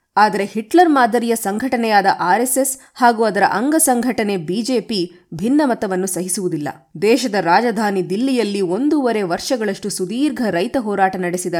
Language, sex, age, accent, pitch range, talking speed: Kannada, female, 20-39, native, 180-245 Hz, 105 wpm